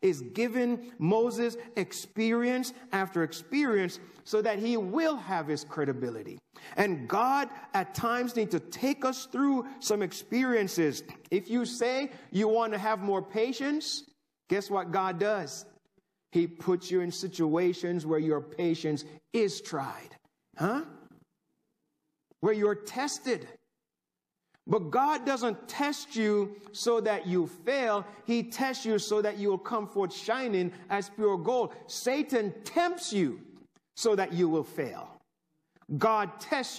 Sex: male